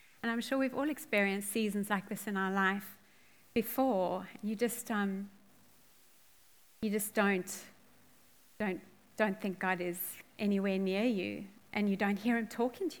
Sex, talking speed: female, 155 wpm